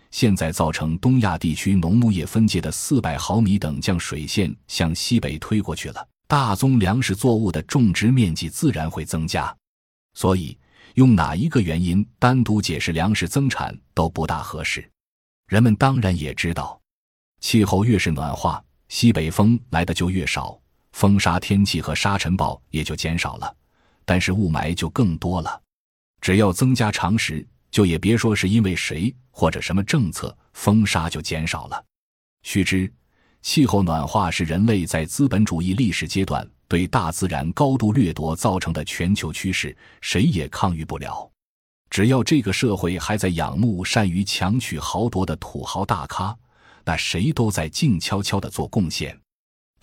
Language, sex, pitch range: Chinese, male, 80-110 Hz